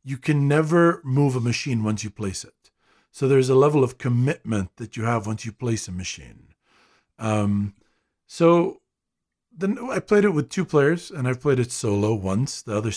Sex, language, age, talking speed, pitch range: male, English, 50-69, 190 wpm, 110-145 Hz